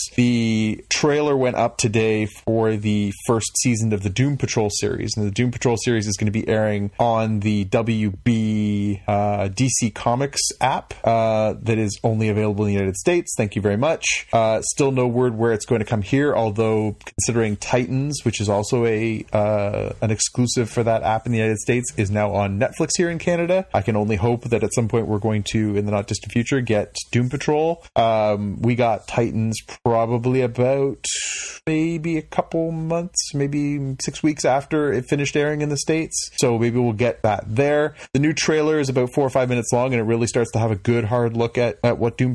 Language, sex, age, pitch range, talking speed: English, male, 30-49, 110-125 Hz, 205 wpm